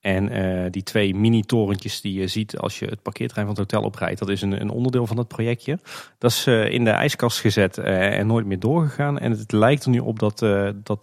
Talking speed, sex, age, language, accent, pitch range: 250 wpm, male, 30-49, Dutch, Dutch, 95-120 Hz